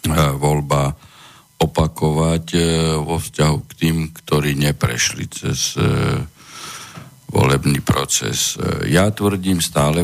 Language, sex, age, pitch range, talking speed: Slovak, male, 50-69, 70-80 Hz, 85 wpm